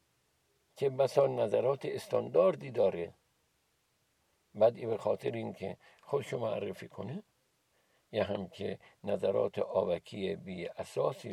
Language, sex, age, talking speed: Persian, male, 60-79, 105 wpm